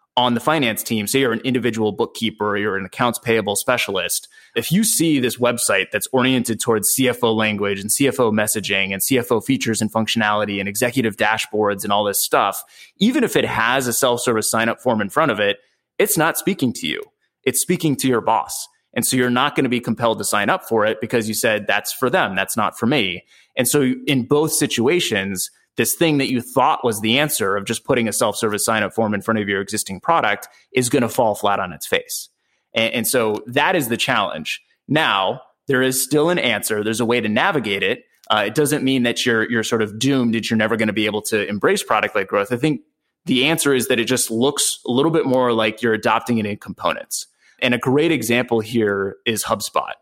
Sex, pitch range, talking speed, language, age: male, 110-130 Hz, 220 wpm, English, 20-39